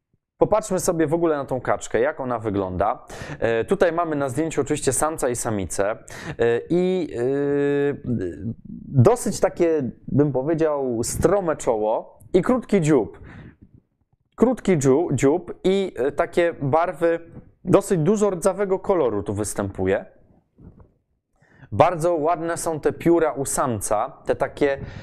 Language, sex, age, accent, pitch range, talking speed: Polish, male, 20-39, native, 120-165 Hz, 115 wpm